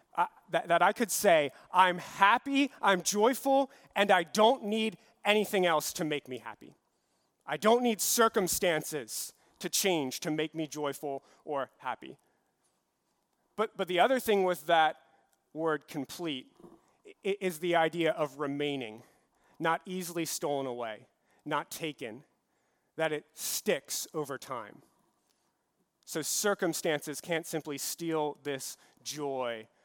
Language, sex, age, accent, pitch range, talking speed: English, male, 30-49, American, 145-190 Hz, 130 wpm